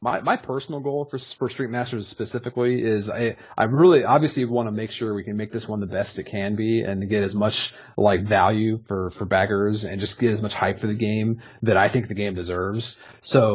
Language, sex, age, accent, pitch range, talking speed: English, male, 30-49, American, 105-125 Hz, 235 wpm